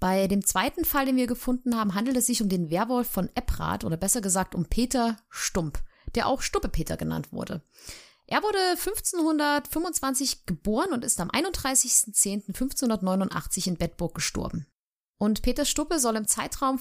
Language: German